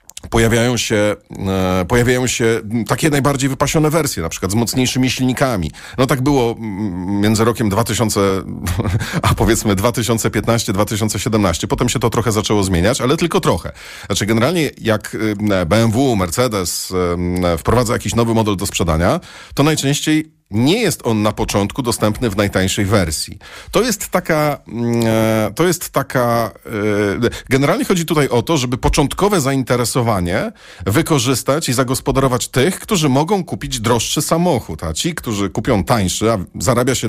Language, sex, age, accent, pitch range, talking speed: Polish, male, 40-59, native, 105-135 Hz, 135 wpm